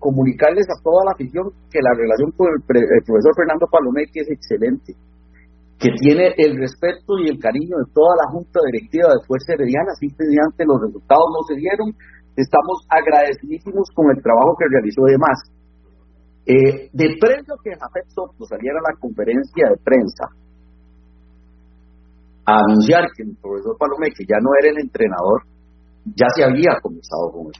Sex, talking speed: male, 165 wpm